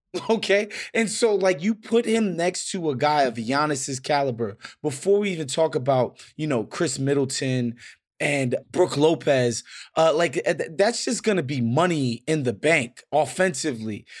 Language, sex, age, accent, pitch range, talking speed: English, male, 20-39, American, 145-200 Hz, 160 wpm